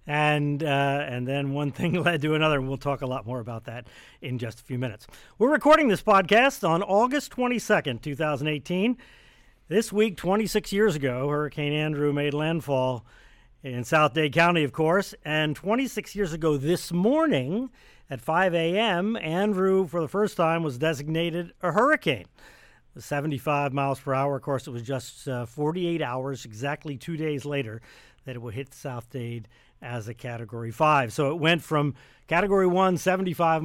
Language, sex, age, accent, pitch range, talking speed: English, male, 50-69, American, 130-170 Hz, 170 wpm